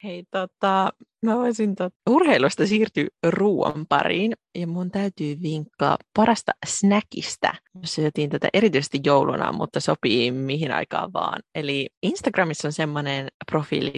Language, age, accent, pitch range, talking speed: Finnish, 30-49, native, 150-205 Hz, 125 wpm